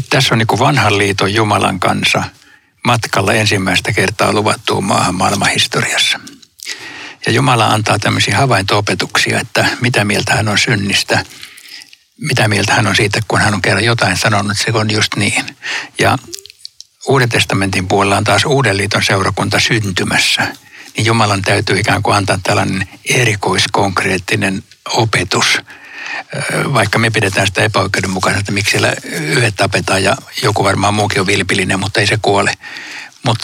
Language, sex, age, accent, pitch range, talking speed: Finnish, male, 60-79, native, 100-115 Hz, 145 wpm